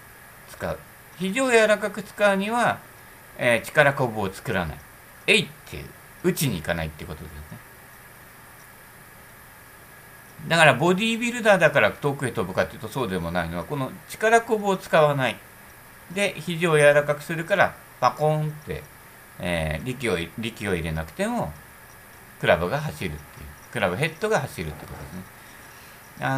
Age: 60-79